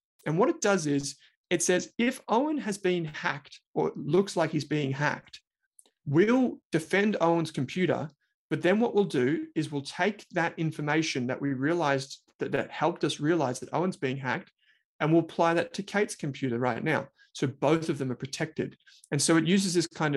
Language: English